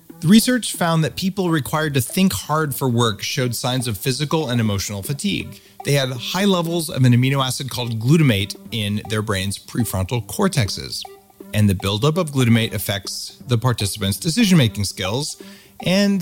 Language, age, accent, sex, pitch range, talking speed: English, 30-49, American, male, 105-155 Hz, 165 wpm